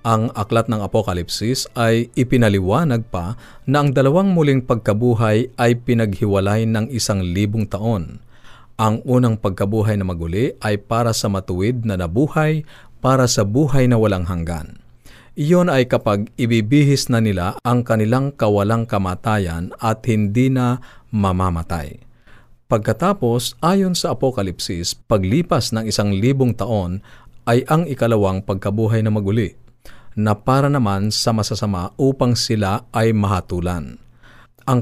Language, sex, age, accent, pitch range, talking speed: Filipino, male, 50-69, native, 100-125 Hz, 125 wpm